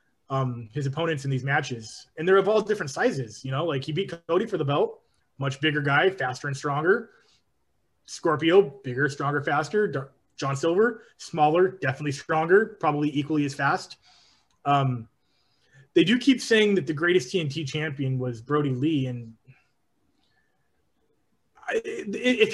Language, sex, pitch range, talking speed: English, male, 135-180 Hz, 145 wpm